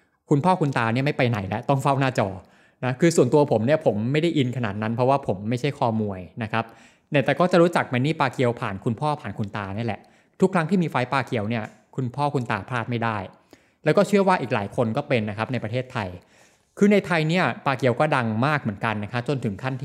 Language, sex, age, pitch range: Thai, male, 20-39, 115-145 Hz